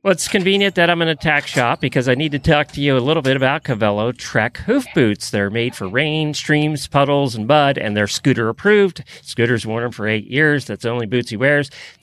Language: English